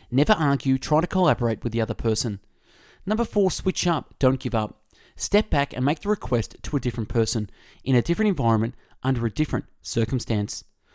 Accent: Australian